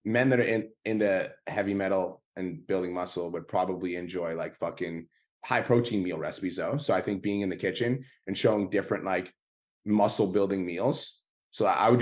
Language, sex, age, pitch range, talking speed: English, male, 20-39, 95-110 Hz, 185 wpm